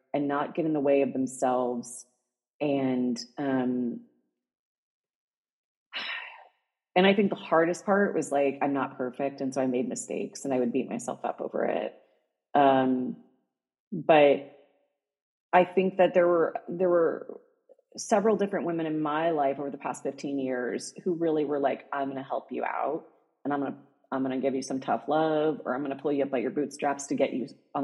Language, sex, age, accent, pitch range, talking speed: English, female, 30-49, American, 135-160 Hz, 195 wpm